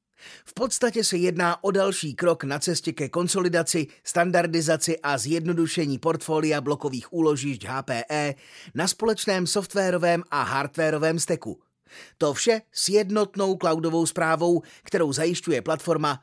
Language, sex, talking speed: Czech, male, 120 wpm